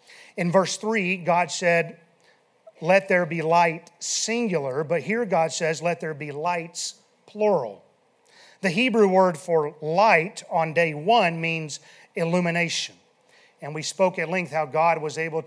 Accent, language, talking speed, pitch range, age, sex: American, English, 145 wpm, 165-200 Hz, 40-59, male